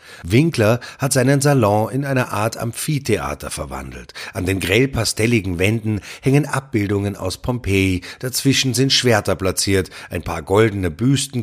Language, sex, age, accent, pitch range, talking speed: German, male, 30-49, German, 90-125 Hz, 130 wpm